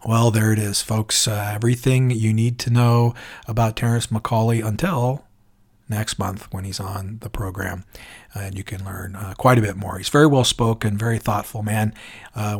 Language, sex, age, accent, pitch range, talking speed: English, male, 40-59, American, 105-120 Hz, 185 wpm